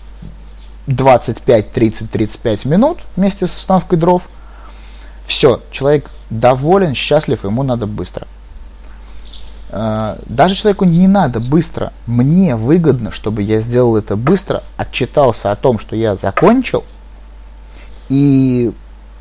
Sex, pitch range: male, 100-145 Hz